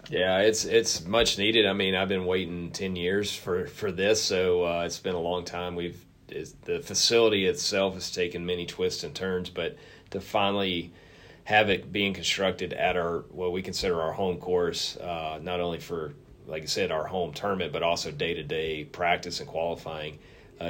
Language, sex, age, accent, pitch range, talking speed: English, male, 30-49, American, 85-95 Hz, 185 wpm